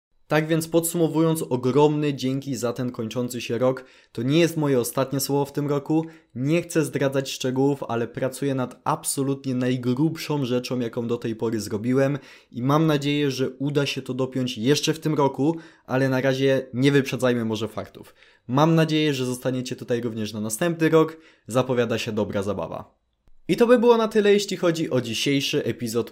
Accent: native